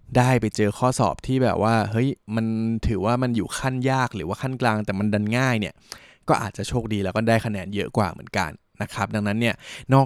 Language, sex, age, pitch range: Thai, male, 20-39, 105-125 Hz